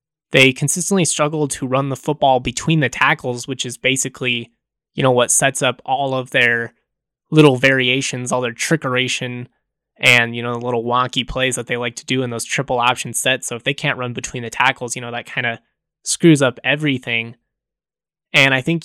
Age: 20-39